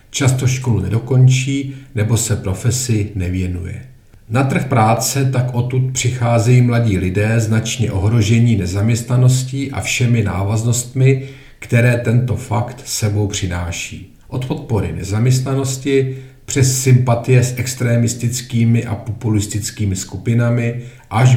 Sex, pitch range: male, 105-125 Hz